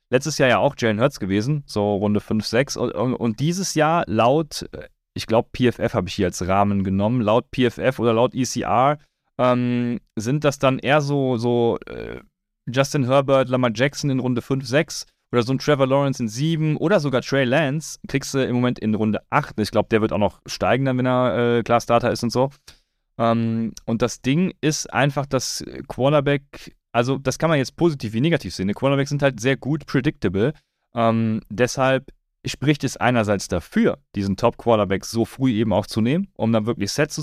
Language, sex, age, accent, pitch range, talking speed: German, male, 30-49, German, 110-135 Hz, 195 wpm